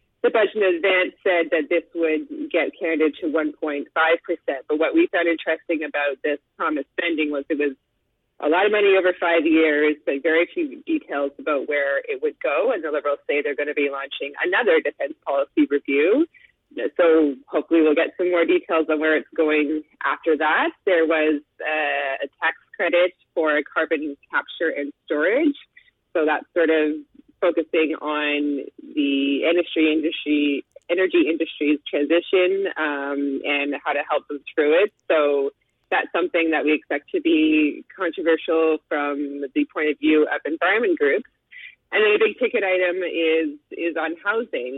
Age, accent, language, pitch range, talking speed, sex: 30-49, American, English, 150-190 Hz, 165 wpm, female